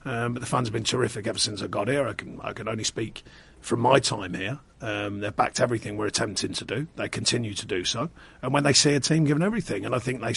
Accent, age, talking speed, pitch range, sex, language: British, 40-59, 270 wpm, 110-135 Hz, male, English